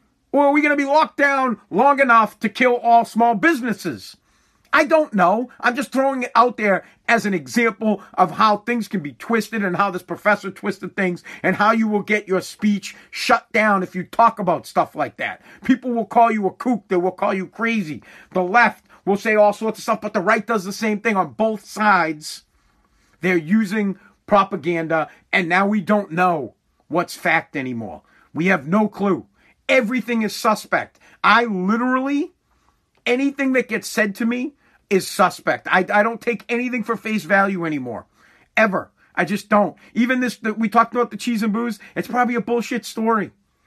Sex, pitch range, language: male, 195-240 Hz, English